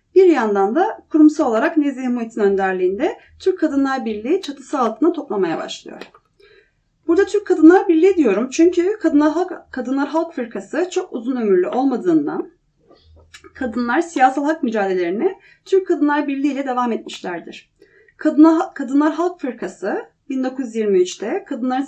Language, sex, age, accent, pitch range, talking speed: Turkish, female, 30-49, native, 235-330 Hz, 125 wpm